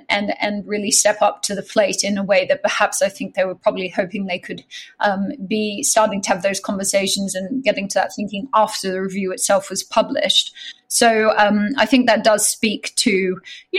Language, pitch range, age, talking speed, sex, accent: English, 200-255 Hz, 20-39, 210 wpm, female, Australian